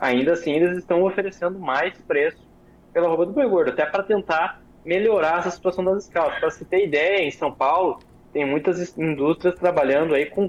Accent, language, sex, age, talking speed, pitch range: Brazilian, Portuguese, male, 20-39, 185 wpm, 140-185 Hz